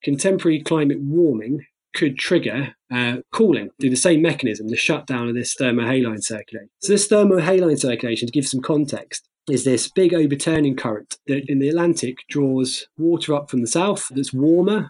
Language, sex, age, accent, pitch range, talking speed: English, male, 20-39, British, 125-150 Hz, 170 wpm